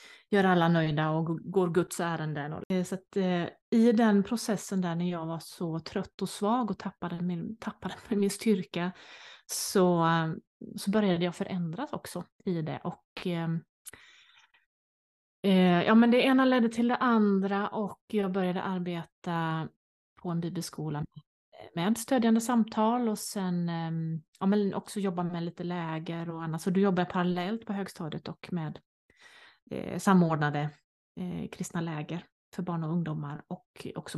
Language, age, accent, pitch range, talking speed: Swedish, 30-49, native, 170-205 Hz, 150 wpm